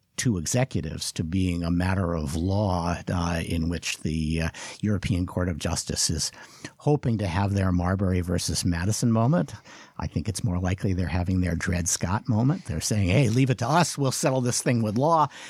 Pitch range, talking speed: 95-130 Hz, 195 wpm